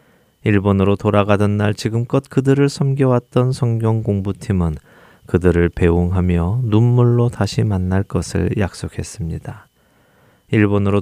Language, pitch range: Korean, 90-115 Hz